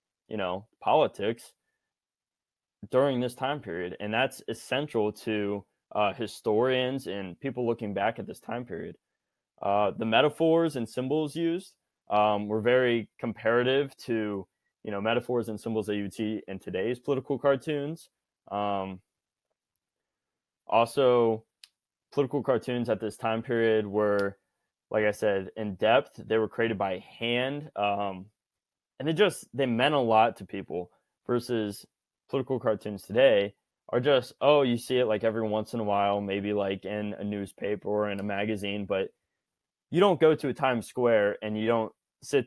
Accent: American